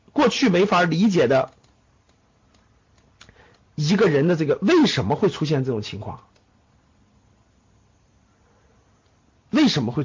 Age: 50-69